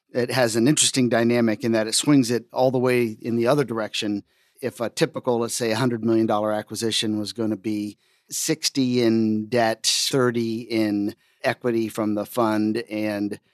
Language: English